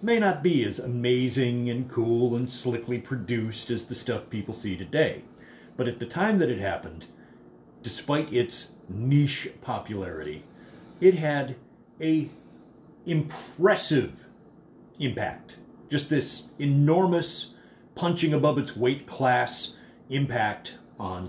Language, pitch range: English, 100-130 Hz